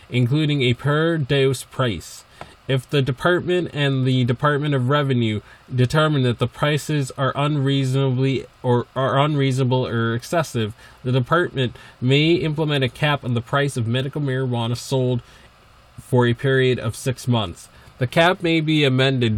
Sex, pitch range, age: male, 120-140 Hz, 20-39